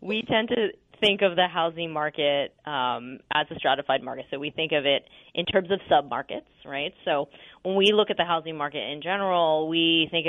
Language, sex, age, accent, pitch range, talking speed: English, female, 20-39, American, 145-175 Hz, 205 wpm